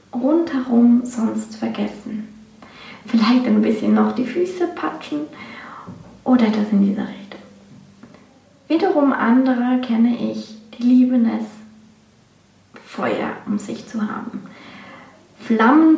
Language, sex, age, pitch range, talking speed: German, female, 20-39, 220-265 Hz, 105 wpm